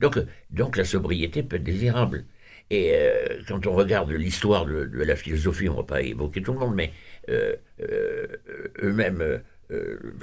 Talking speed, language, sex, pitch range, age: 170 wpm, French, male, 80-120 Hz, 60-79